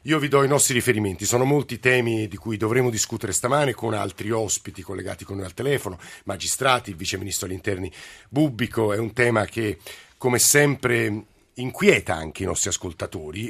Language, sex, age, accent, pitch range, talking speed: Italian, male, 50-69, native, 105-130 Hz, 170 wpm